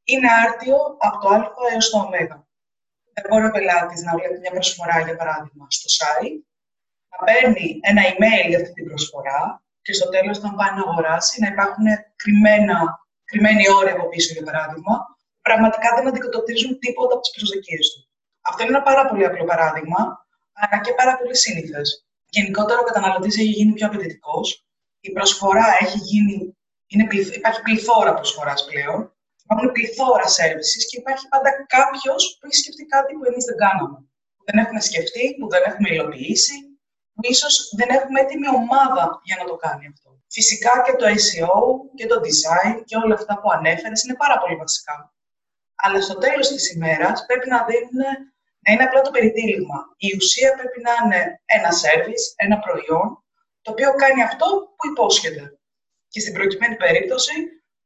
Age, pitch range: 20-39, 185-255 Hz